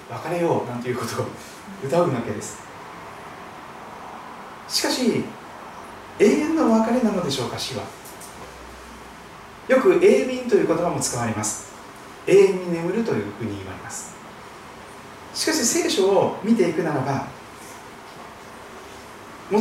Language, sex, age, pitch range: Japanese, male, 40-59, 165-245 Hz